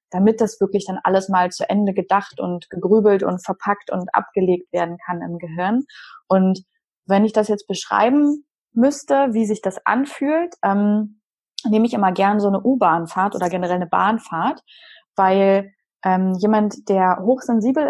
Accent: German